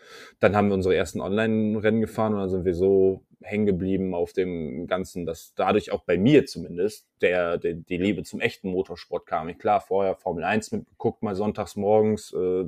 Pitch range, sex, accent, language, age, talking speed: 95-110 Hz, male, German, German, 20-39, 180 wpm